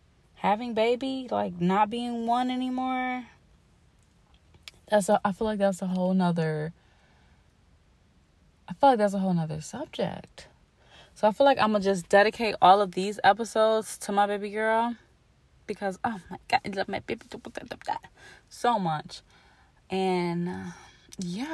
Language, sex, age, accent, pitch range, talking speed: English, female, 20-39, American, 170-220 Hz, 150 wpm